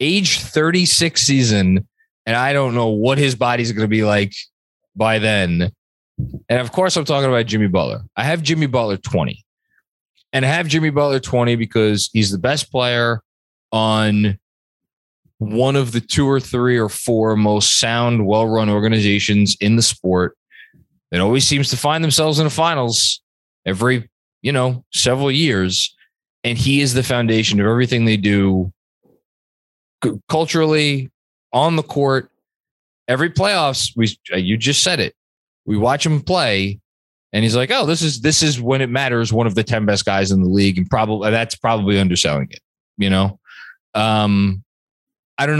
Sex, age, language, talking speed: male, 20-39, English, 165 wpm